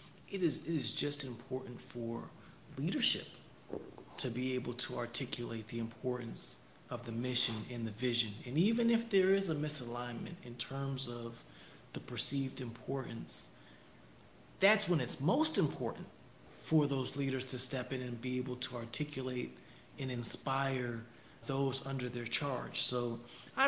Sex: male